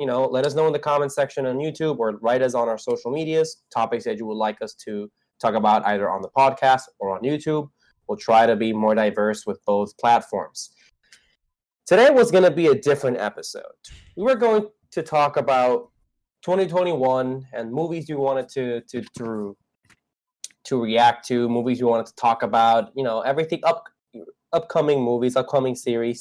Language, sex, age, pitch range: English, male, 20-39, 120-185 Hz